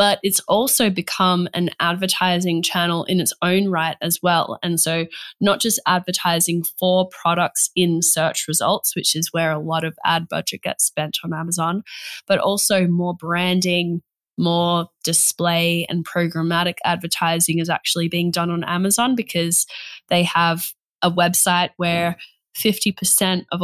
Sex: female